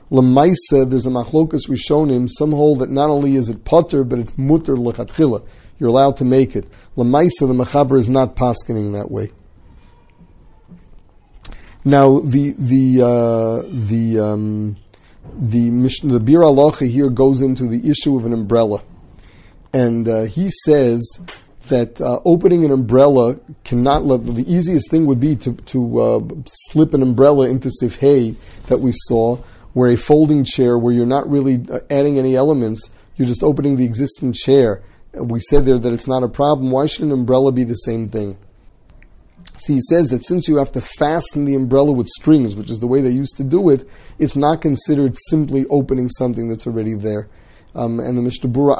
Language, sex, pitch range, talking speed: English, male, 115-140 Hz, 180 wpm